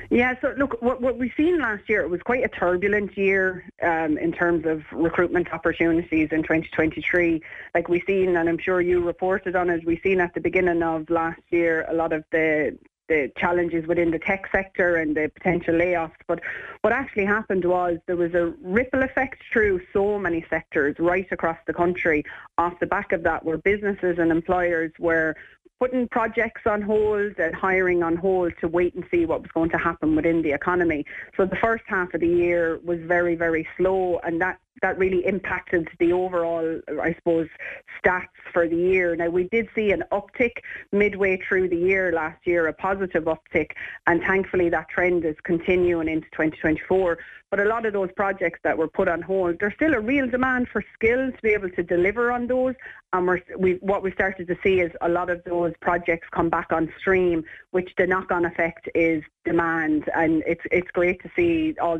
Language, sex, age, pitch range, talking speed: English, female, 30-49, 165-195 Hz, 200 wpm